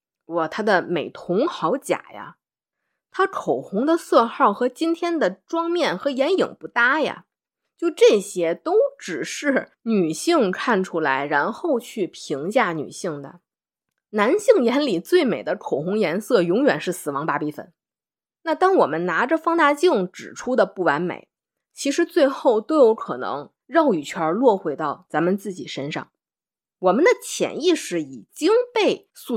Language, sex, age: Chinese, female, 20-39